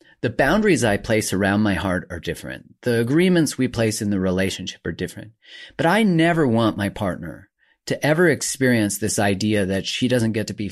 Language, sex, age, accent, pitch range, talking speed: English, male, 30-49, American, 100-125 Hz, 195 wpm